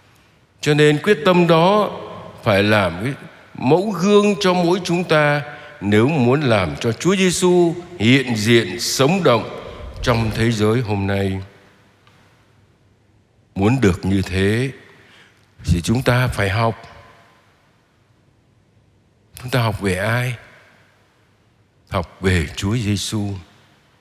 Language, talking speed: Vietnamese, 115 wpm